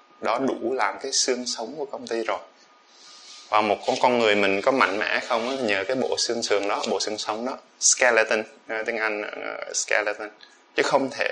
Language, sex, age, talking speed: Vietnamese, male, 20-39, 205 wpm